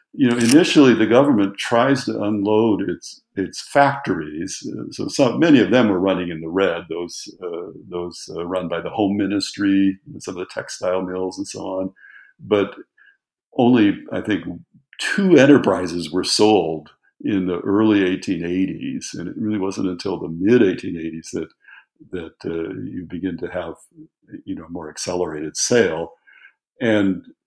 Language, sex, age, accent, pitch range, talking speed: English, male, 60-79, American, 90-115 Hz, 155 wpm